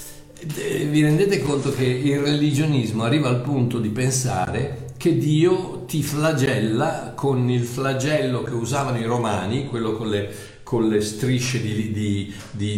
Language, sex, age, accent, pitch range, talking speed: Italian, male, 50-69, native, 110-145 Hz, 130 wpm